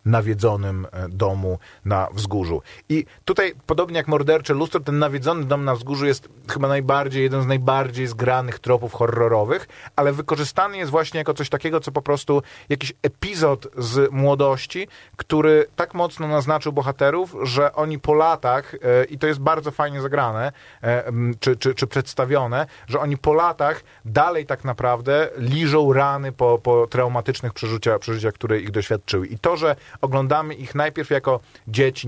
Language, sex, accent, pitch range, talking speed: Polish, male, native, 120-145 Hz, 150 wpm